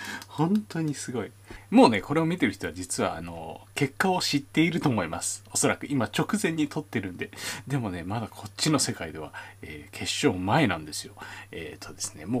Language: Japanese